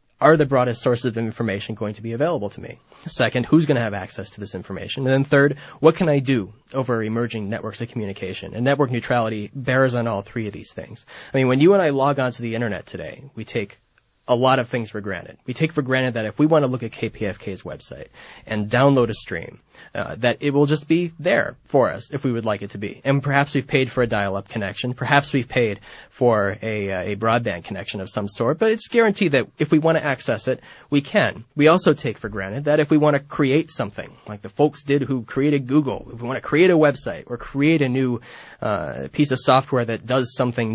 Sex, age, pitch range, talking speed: male, 20-39, 110-140 Hz, 245 wpm